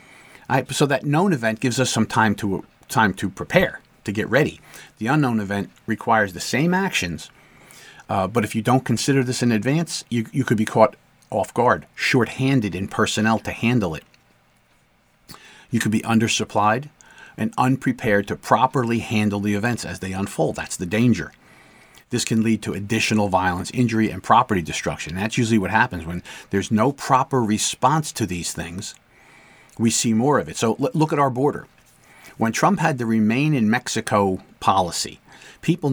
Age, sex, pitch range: 40-59, male, 105-130 Hz